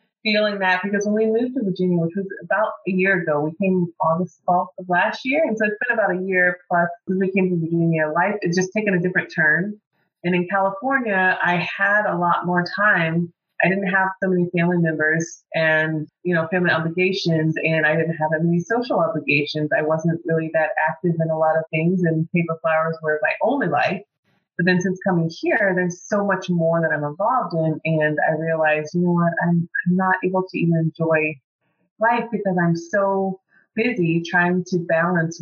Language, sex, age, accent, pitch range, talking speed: English, female, 20-39, American, 160-195 Hz, 200 wpm